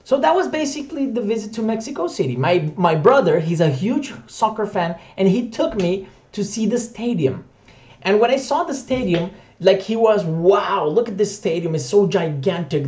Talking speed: 195 wpm